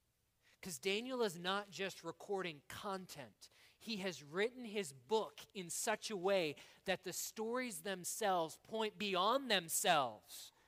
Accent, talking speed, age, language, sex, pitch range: American, 130 wpm, 40-59, English, male, 175-230 Hz